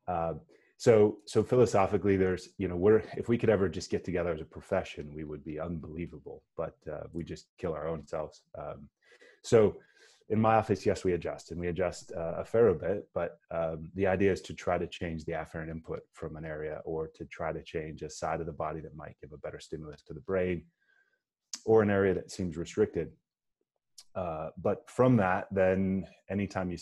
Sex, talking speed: male, 205 wpm